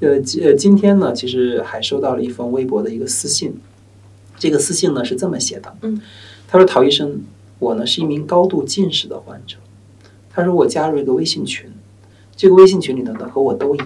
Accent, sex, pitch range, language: native, male, 100-155 Hz, Chinese